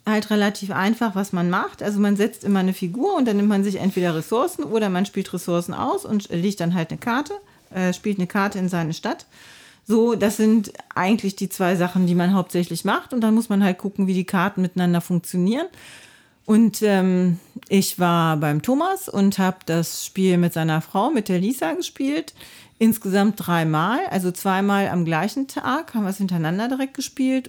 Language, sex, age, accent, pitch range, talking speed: German, female, 40-59, German, 180-235 Hz, 195 wpm